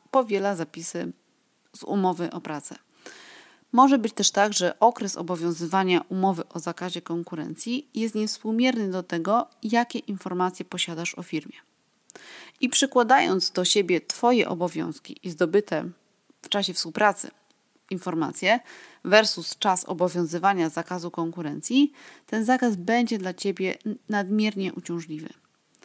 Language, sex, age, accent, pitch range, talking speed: Polish, female, 30-49, native, 175-235 Hz, 115 wpm